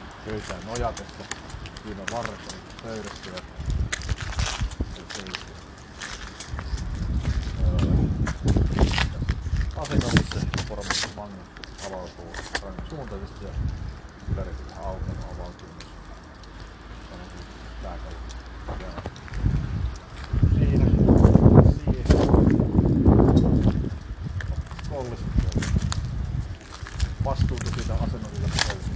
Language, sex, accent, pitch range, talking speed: Finnish, male, native, 80-100 Hz, 35 wpm